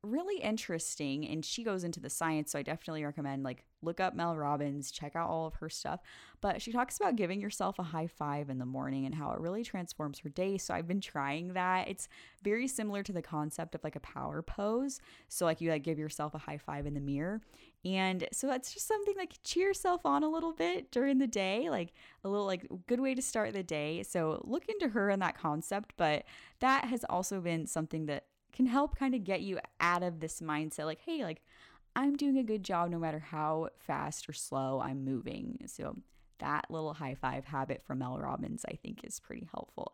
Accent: American